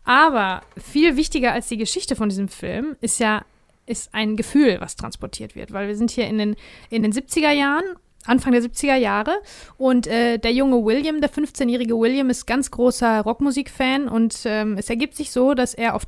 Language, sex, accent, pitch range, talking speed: German, female, German, 220-255 Hz, 195 wpm